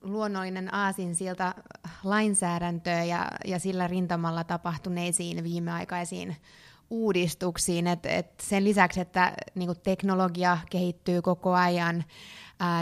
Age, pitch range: 20-39, 170-185 Hz